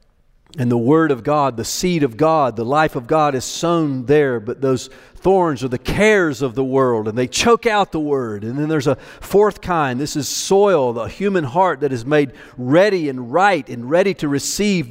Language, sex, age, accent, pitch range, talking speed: English, male, 50-69, American, 115-165 Hz, 215 wpm